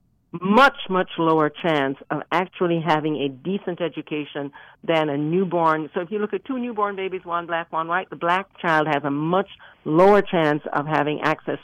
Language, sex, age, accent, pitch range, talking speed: English, female, 50-69, American, 150-195 Hz, 185 wpm